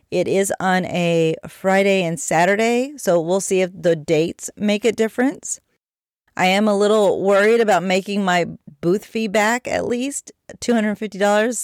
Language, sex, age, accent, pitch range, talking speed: English, female, 30-49, American, 180-220 Hz, 155 wpm